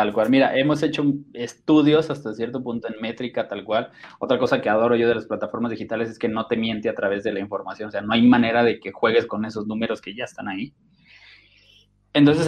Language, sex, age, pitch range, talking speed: Spanish, male, 20-39, 110-135 Hz, 230 wpm